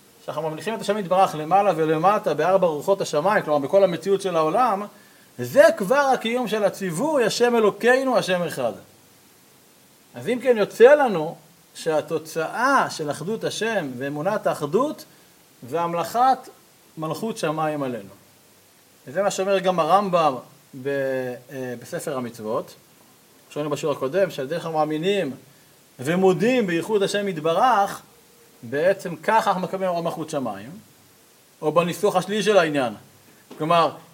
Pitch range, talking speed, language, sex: 150-200 Hz, 125 wpm, Hebrew, male